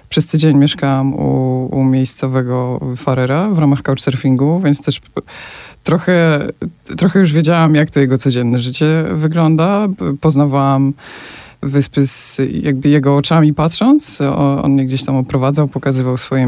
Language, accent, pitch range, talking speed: Polish, native, 135-160 Hz, 130 wpm